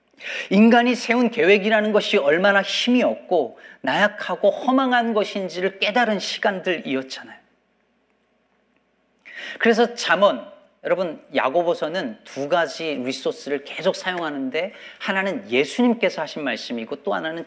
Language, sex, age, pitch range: Korean, male, 40-59, 165-230 Hz